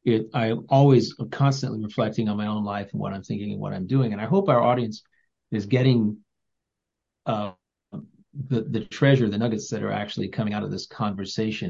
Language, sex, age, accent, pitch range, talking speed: English, male, 40-59, American, 110-130 Hz, 200 wpm